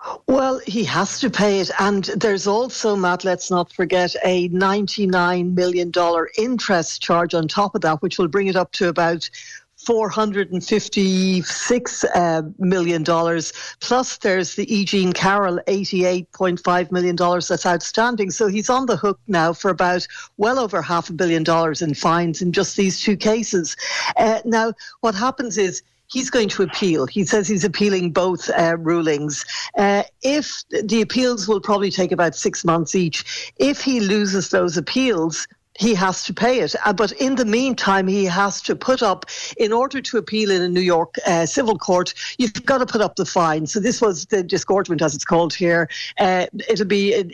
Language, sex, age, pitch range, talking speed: English, female, 60-79, 180-215 Hz, 175 wpm